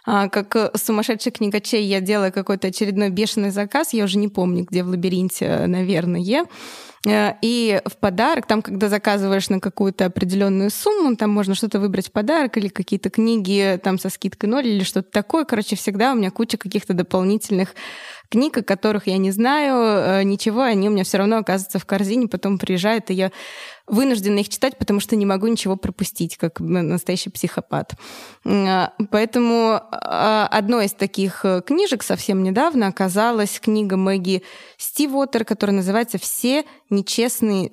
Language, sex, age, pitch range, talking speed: Russian, female, 20-39, 195-230 Hz, 155 wpm